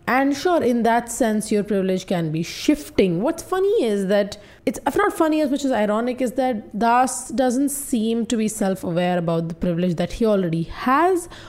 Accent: Indian